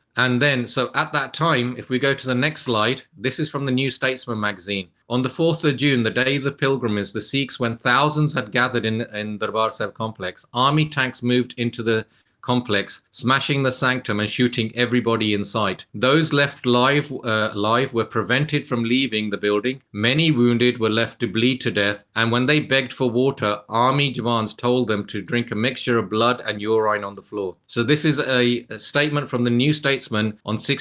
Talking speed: 205 wpm